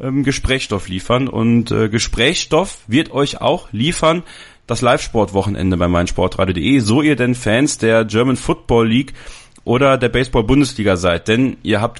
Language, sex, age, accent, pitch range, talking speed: German, male, 30-49, German, 105-125 Hz, 140 wpm